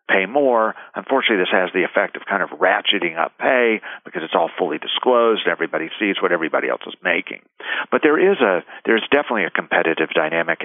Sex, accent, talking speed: male, American, 195 wpm